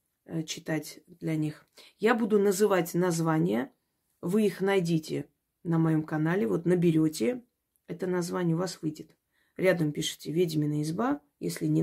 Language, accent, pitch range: Russian, native, 155-185 Hz